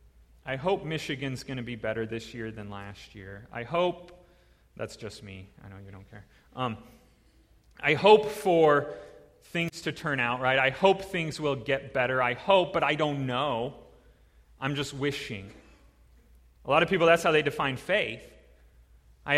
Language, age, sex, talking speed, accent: English, 30-49, male, 175 wpm, American